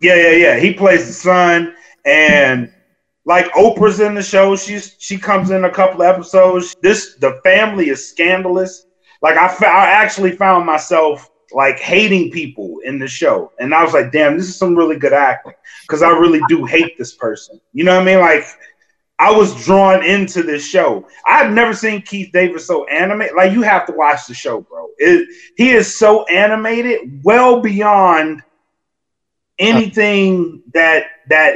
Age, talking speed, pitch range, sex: 30-49, 180 wpm, 165-210 Hz, male